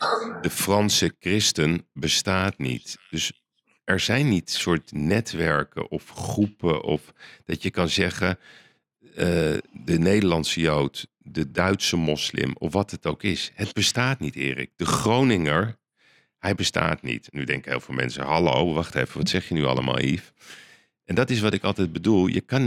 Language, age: Dutch, 40-59